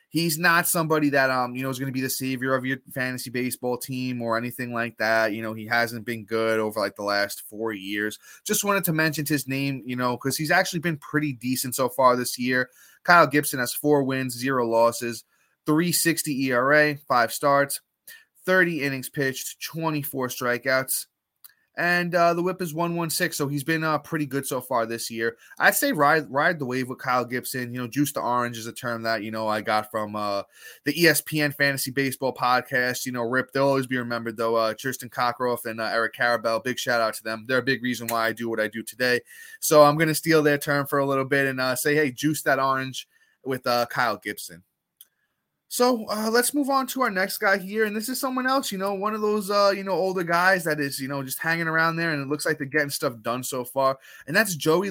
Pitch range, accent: 125-170 Hz, American